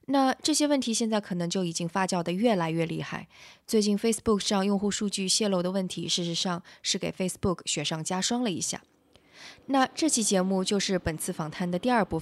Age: 20-39